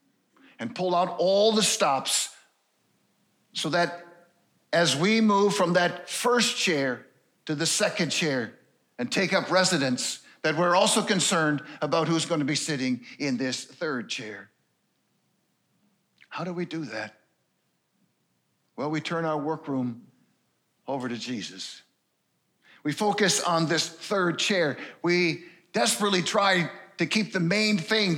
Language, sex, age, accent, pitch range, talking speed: English, male, 50-69, American, 150-200 Hz, 135 wpm